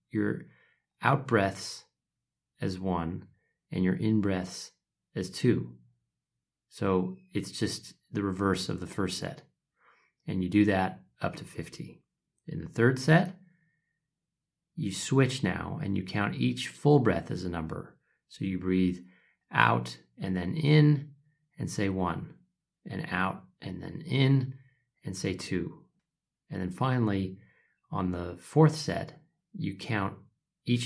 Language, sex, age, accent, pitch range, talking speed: English, male, 30-49, American, 90-135 Hz, 140 wpm